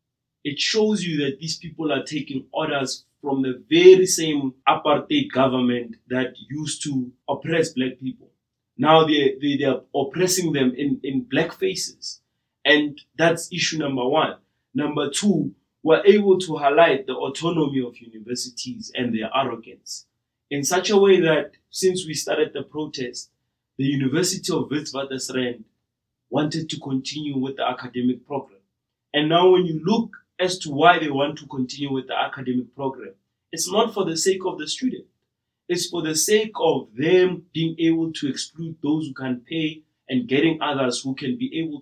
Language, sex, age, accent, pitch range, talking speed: English, male, 30-49, South African, 130-165 Hz, 165 wpm